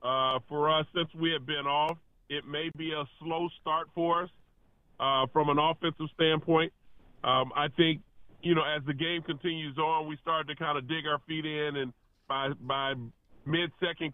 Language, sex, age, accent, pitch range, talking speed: English, female, 30-49, American, 140-160 Hz, 185 wpm